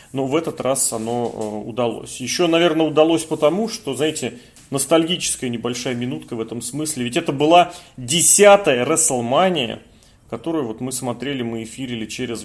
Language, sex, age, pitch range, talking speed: Russian, male, 30-49, 120-150 Hz, 150 wpm